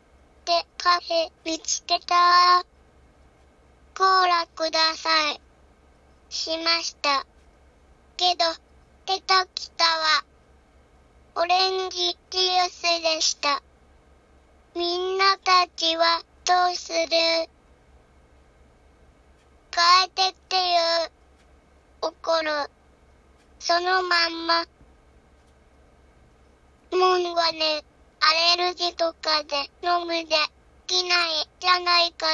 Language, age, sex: Japanese, 20-39, male